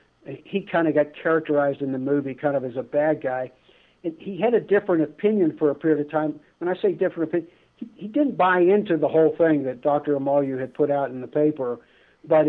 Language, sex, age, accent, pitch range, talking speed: English, male, 60-79, American, 130-155 Hz, 230 wpm